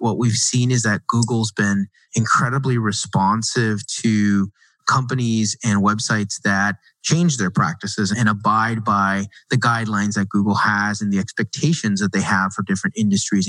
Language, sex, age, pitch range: English, male, 30-49, 105-135 Hz